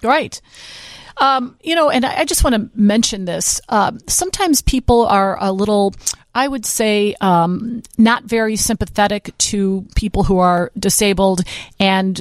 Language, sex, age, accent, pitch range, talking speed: English, female, 40-59, American, 185-235 Hz, 150 wpm